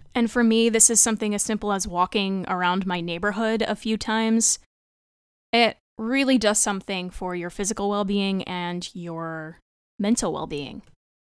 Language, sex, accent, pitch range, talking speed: English, female, American, 195-250 Hz, 150 wpm